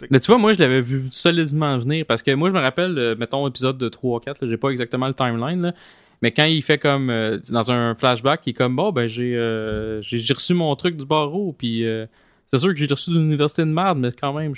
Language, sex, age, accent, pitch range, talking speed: French, male, 20-39, Canadian, 115-140 Hz, 270 wpm